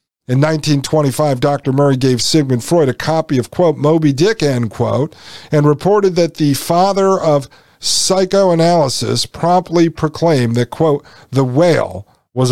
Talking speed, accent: 140 wpm, American